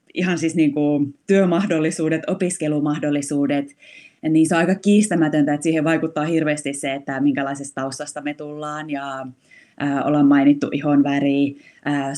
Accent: native